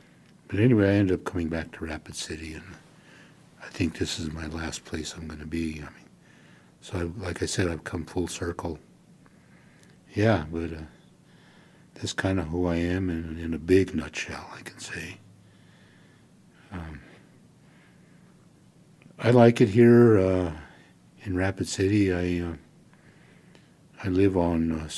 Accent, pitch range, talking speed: American, 80-100 Hz, 155 wpm